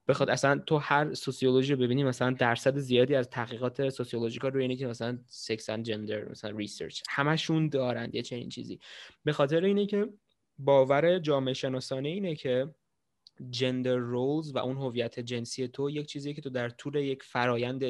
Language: Persian